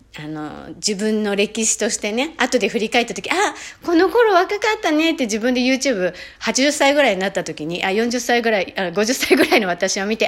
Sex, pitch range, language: female, 190-295 Hz, Japanese